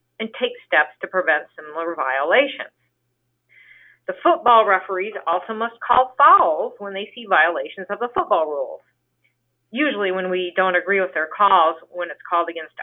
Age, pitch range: 40-59, 185-270 Hz